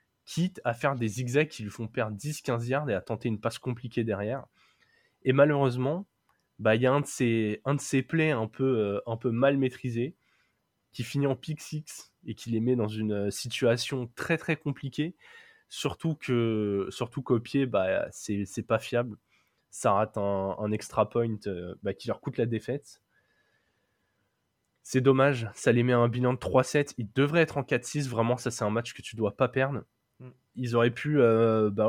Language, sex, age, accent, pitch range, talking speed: French, male, 20-39, French, 115-140 Hz, 200 wpm